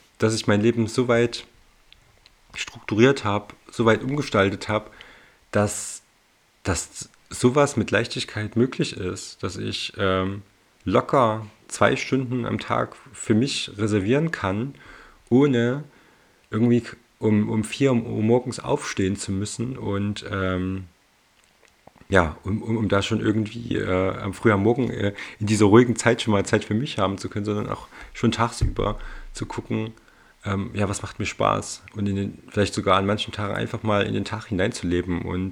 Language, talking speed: German, 155 wpm